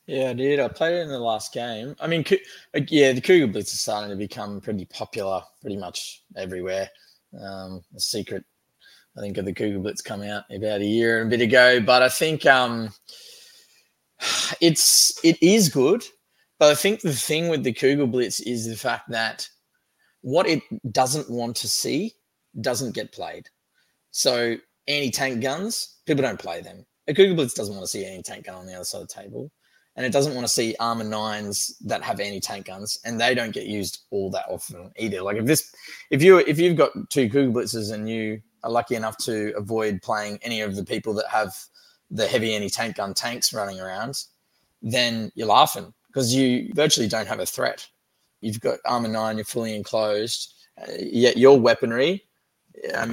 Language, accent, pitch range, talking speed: English, Australian, 105-135 Hz, 200 wpm